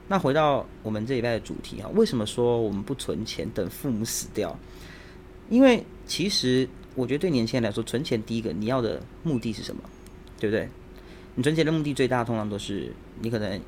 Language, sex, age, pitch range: Chinese, male, 20-39, 105-130 Hz